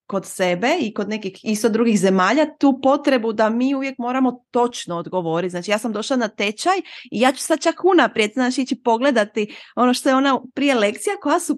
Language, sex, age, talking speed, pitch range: Croatian, female, 30-49, 200 wpm, 195-270 Hz